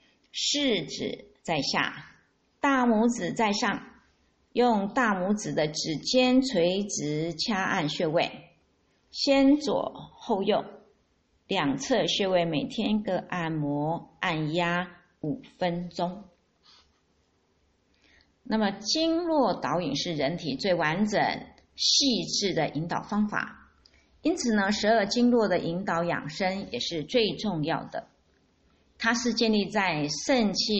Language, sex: Chinese, female